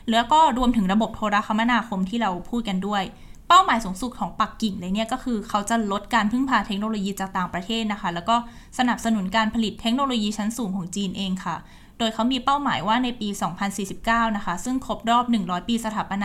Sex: female